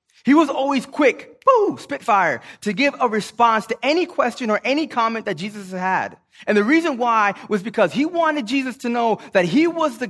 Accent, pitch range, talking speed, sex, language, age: American, 135-230 Hz, 195 wpm, male, English, 20-39